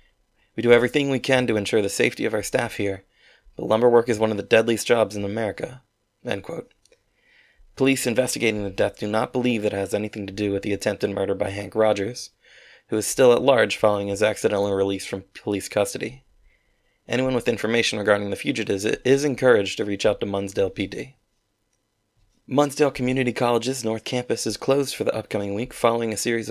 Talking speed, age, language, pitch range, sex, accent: 190 wpm, 20-39, English, 100-125 Hz, male, American